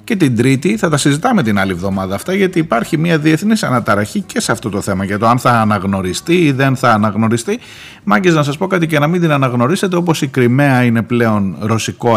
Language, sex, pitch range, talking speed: Greek, male, 115-185 Hz, 220 wpm